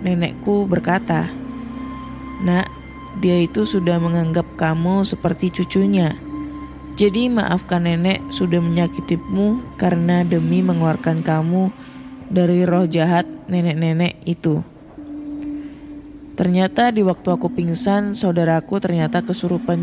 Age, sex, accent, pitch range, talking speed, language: 20-39, female, native, 165-220 Hz, 95 wpm, Indonesian